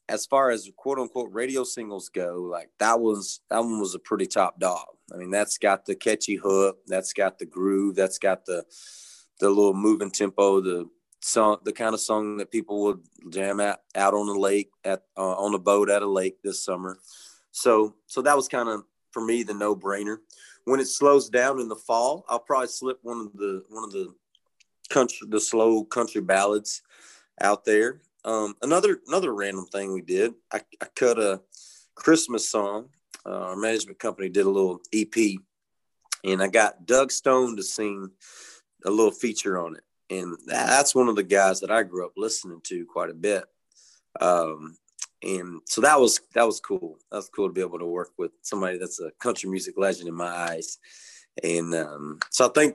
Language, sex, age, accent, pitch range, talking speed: English, male, 30-49, American, 95-115 Hz, 195 wpm